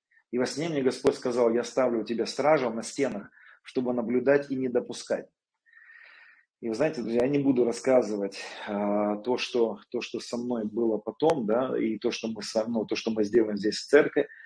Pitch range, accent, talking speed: 115-140 Hz, native, 200 wpm